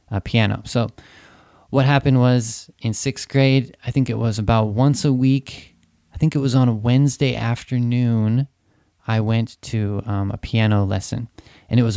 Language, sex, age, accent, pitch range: Japanese, male, 20-39, American, 105-125 Hz